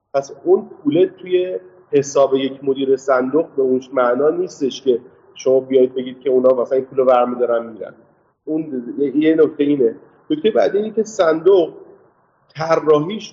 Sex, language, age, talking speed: male, Persian, 30-49, 155 wpm